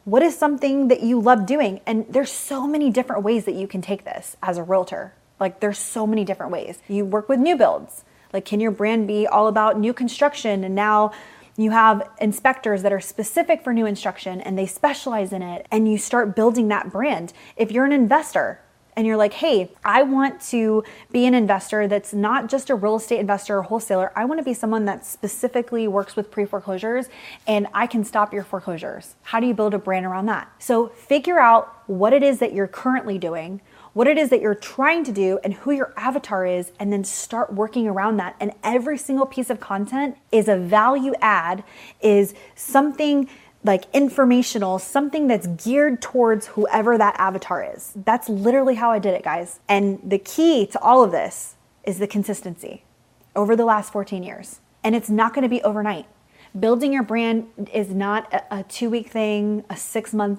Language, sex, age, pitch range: English, female, 20-39, 200-250 Hz